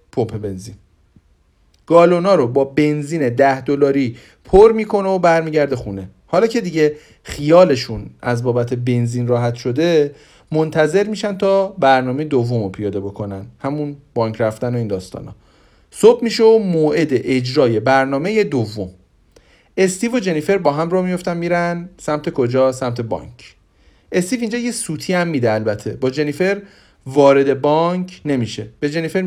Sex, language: male, Persian